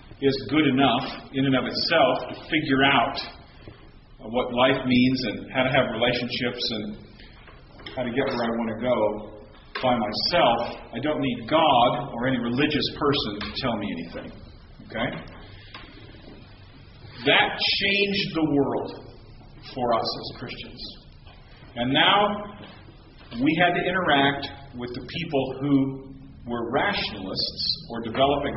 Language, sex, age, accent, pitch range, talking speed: English, male, 40-59, American, 125-170 Hz, 135 wpm